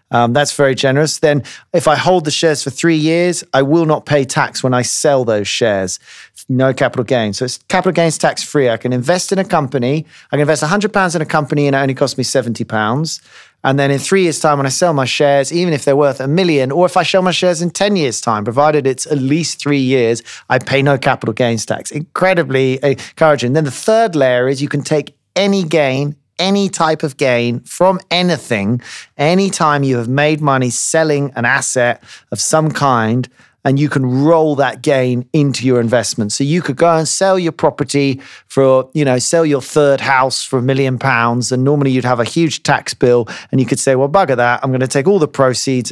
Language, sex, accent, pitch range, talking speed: English, male, British, 125-155 Hz, 220 wpm